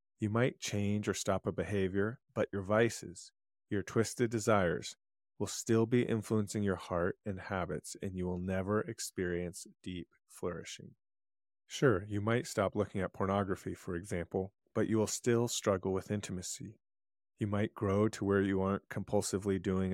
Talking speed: 160 wpm